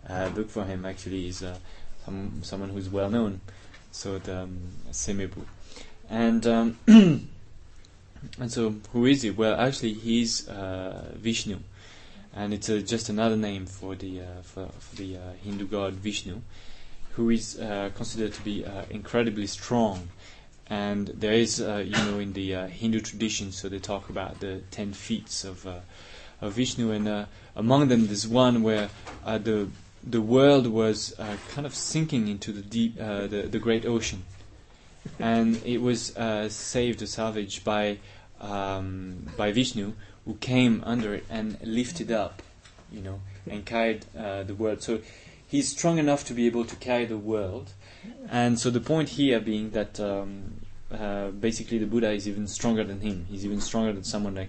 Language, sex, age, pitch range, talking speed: English, male, 20-39, 95-115 Hz, 175 wpm